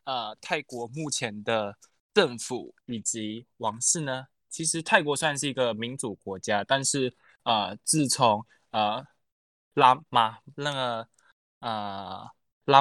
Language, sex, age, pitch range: Chinese, male, 10-29, 115-155 Hz